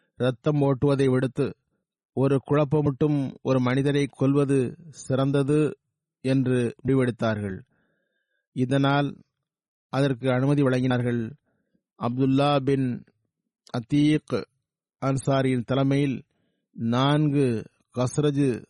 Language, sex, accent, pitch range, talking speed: Tamil, male, native, 130-145 Hz, 70 wpm